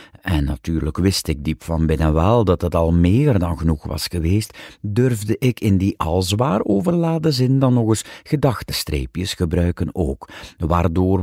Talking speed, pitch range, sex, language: 165 wpm, 80-120 Hz, male, Dutch